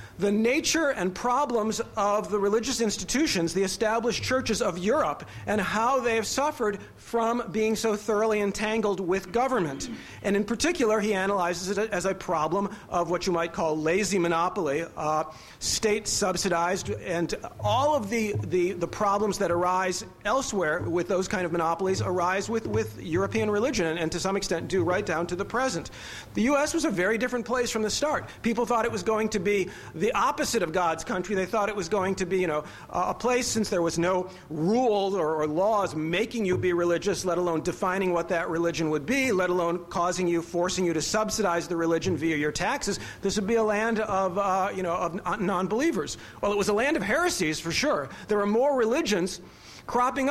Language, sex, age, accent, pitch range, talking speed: English, male, 40-59, American, 175-220 Hz, 200 wpm